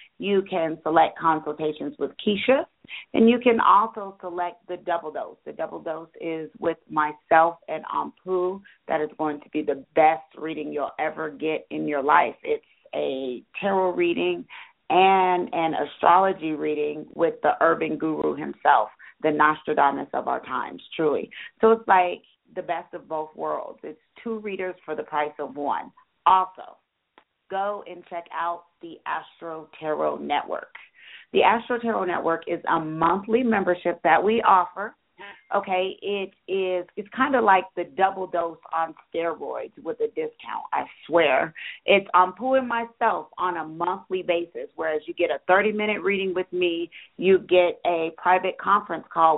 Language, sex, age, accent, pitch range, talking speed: English, female, 40-59, American, 160-195 Hz, 160 wpm